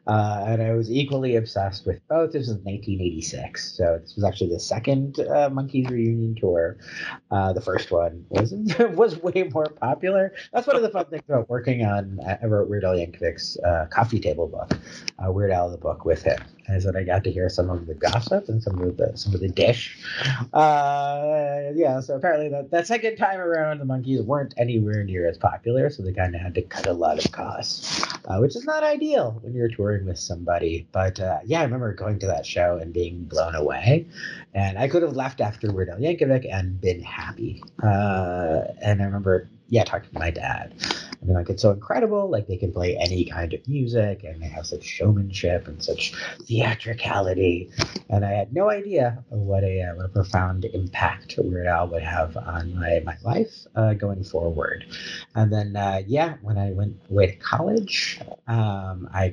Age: 30-49